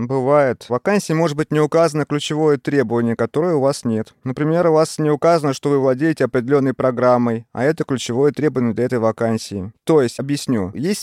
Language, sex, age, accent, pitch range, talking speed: Russian, male, 30-49, native, 115-155 Hz, 185 wpm